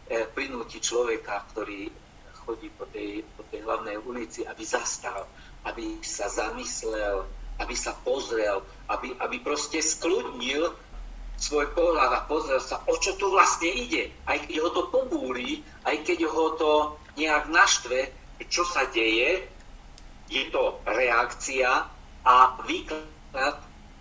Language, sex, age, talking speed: Slovak, male, 50-69, 125 wpm